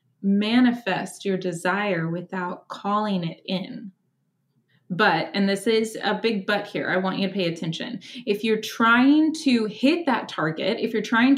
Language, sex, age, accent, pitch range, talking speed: English, female, 20-39, American, 185-240 Hz, 165 wpm